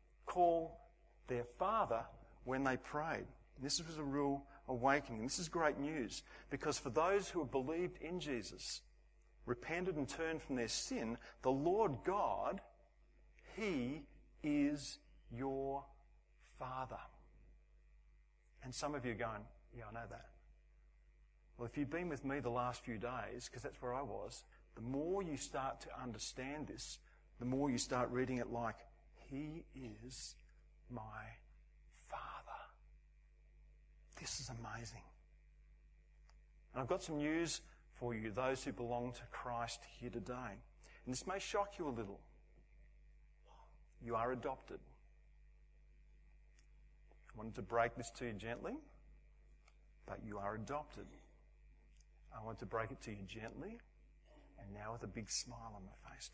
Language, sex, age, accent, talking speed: English, male, 50-69, Australian, 145 wpm